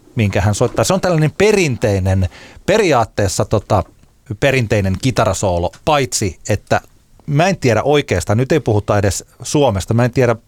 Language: Finnish